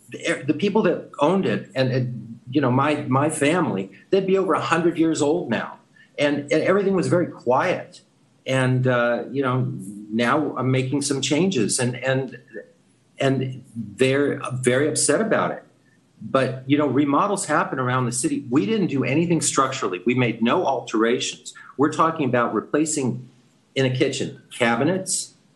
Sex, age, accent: male, 50-69, American